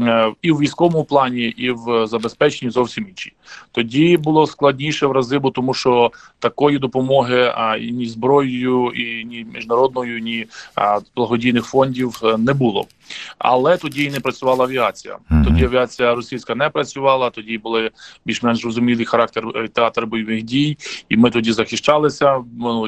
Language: Ukrainian